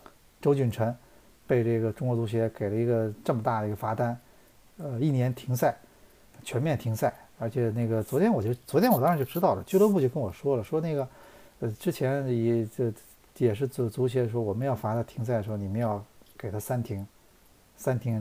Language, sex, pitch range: Chinese, male, 110-135 Hz